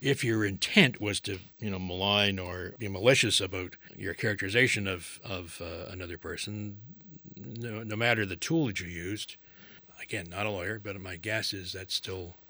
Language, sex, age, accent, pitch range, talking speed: English, male, 60-79, American, 95-110 Hz, 180 wpm